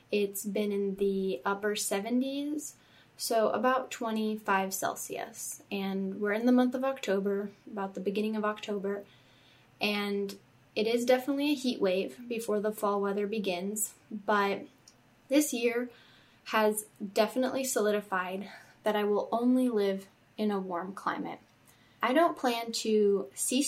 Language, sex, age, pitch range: English, female, 10-29, 200-240 Hz